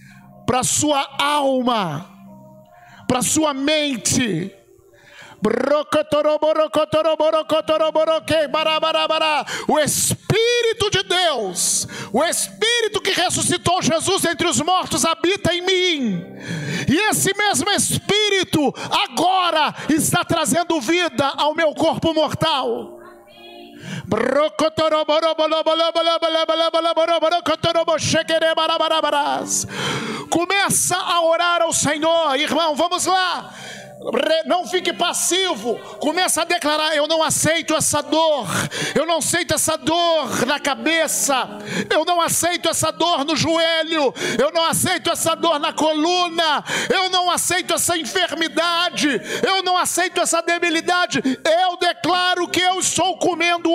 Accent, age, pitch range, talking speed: Brazilian, 50-69, 300-345 Hz, 115 wpm